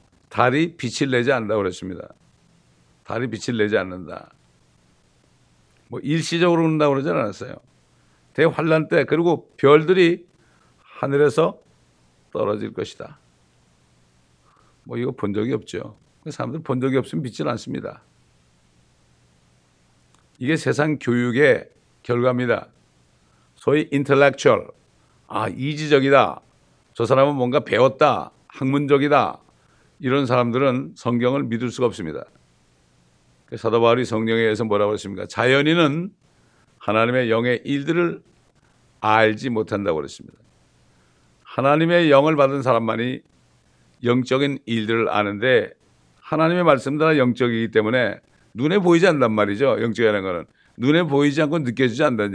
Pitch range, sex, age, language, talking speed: 105-145 Hz, male, 60-79, English, 95 wpm